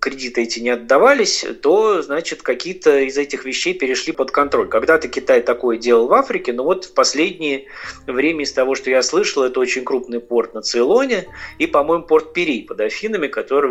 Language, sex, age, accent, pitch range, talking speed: Russian, male, 20-39, native, 120-190 Hz, 185 wpm